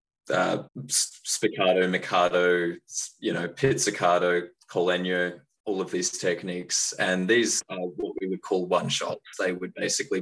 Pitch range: 90-105 Hz